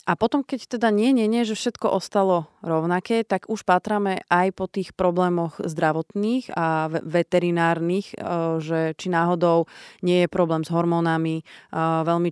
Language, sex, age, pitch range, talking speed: Slovak, female, 30-49, 160-185 Hz, 145 wpm